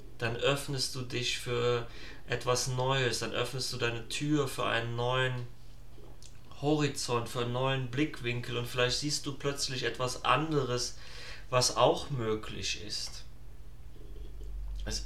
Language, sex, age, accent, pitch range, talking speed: German, male, 30-49, German, 115-130 Hz, 130 wpm